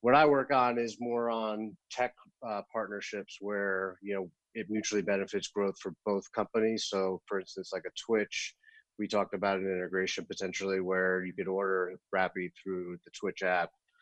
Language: English